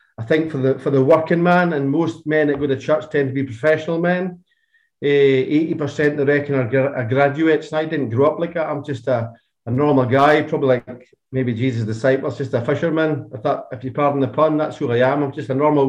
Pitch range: 135-160 Hz